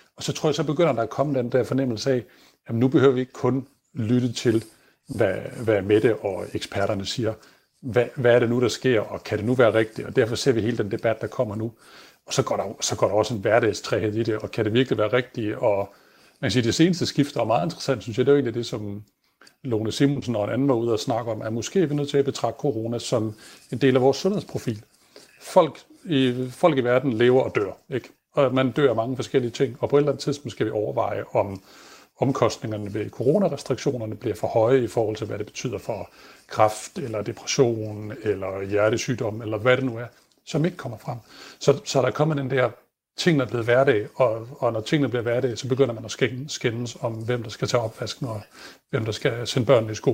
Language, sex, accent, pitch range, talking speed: Danish, male, native, 110-135 Hz, 235 wpm